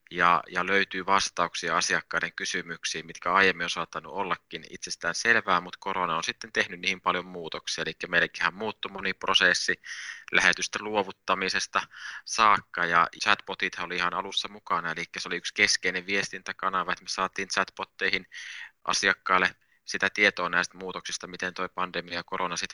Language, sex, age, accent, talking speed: Finnish, male, 20-39, native, 150 wpm